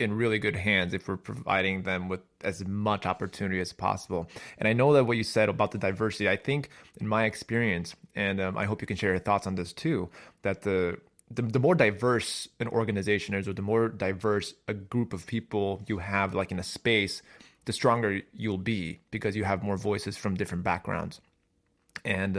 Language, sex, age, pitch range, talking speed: English, male, 20-39, 95-110 Hz, 205 wpm